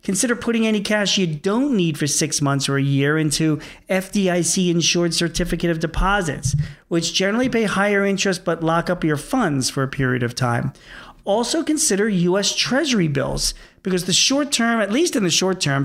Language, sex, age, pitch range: English, male, 40-59, 150-190 Hz